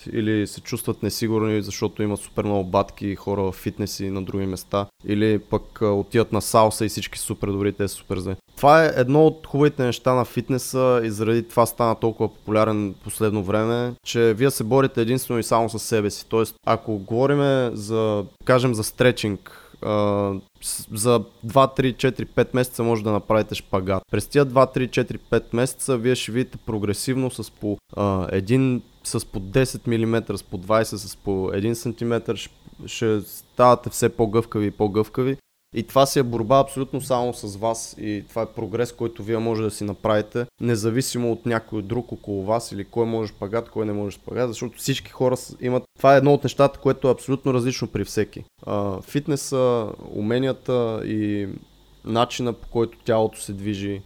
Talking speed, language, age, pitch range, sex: 175 wpm, Bulgarian, 20-39, 105-125 Hz, male